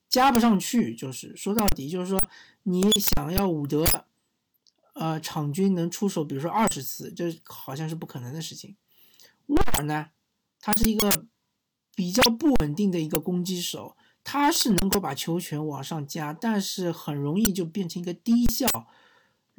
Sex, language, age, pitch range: male, Chinese, 50-69, 160-220 Hz